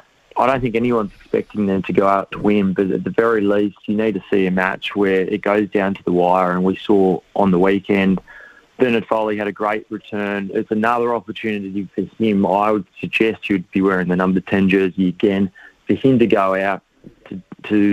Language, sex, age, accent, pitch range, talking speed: English, male, 20-39, Australian, 95-110 Hz, 215 wpm